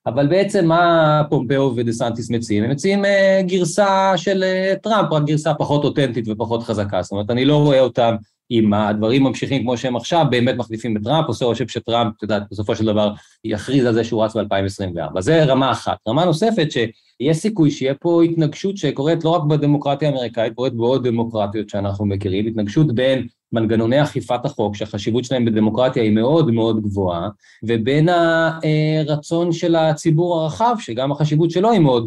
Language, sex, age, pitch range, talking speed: Hebrew, male, 20-39, 110-150 Hz, 165 wpm